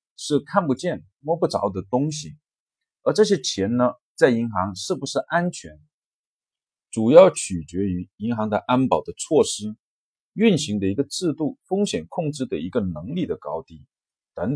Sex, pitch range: male, 105-170 Hz